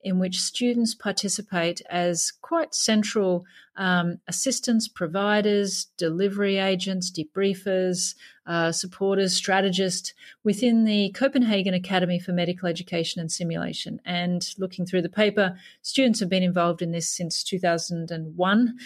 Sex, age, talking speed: female, 30-49, 120 wpm